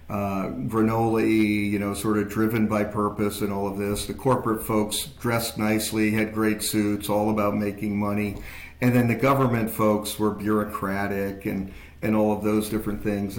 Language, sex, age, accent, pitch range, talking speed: English, male, 50-69, American, 105-125 Hz, 175 wpm